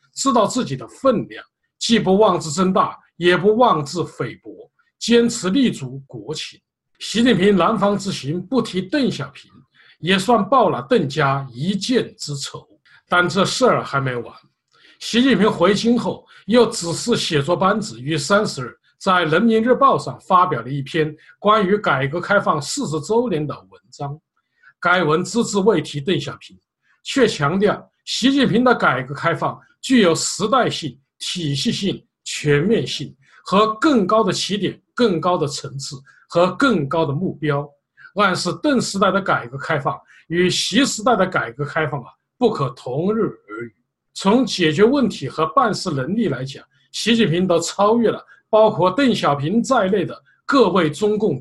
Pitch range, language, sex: 155-220 Hz, Chinese, male